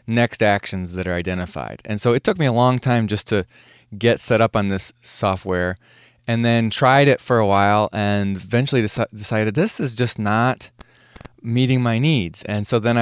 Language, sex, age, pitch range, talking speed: English, male, 20-39, 105-125 Hz, 190 wpm